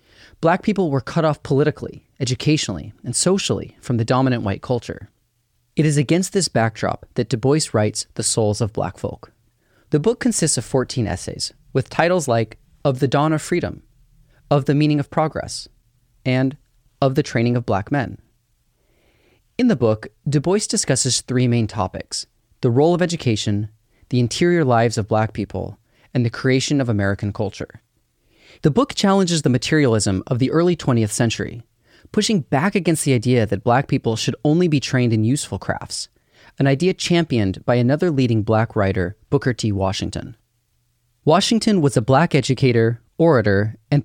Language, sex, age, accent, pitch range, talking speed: English, male, 30-49, American, 110-150 Hz, 165 wpm